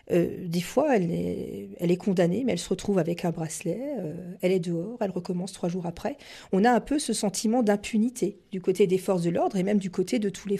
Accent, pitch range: French, 180-210 Hz